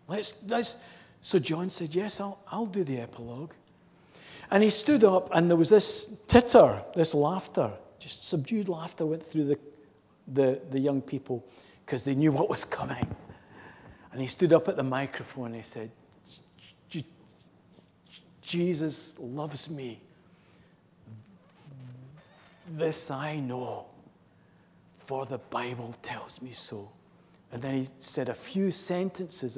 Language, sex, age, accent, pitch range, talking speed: English, male, 50-69, British, 120-165 Hz, 130 wpm